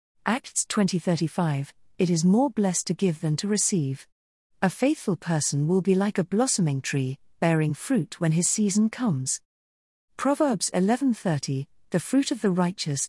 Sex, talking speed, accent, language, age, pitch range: female, 165 wpm, British, English, 40-59, 155-220 Hz